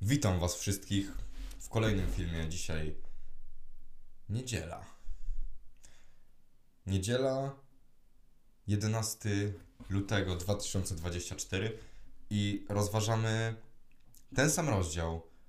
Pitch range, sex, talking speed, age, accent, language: 90-115 Hz, male, 65 wpm, 20-39, native, Polish